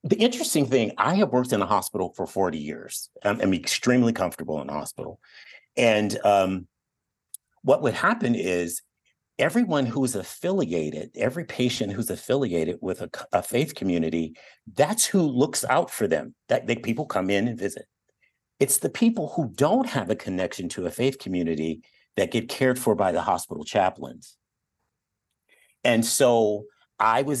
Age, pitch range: 50-69, 105-135 Hz